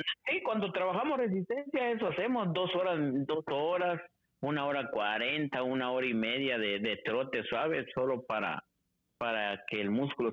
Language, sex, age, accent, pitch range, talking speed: Spanish, male, 50-69, Mexican, 110-160 Hz, 155 wpm